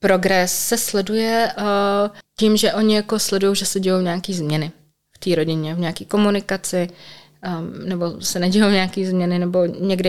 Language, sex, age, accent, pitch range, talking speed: Czech, female, 20-39, native, 190-215 Hz, 165 wpm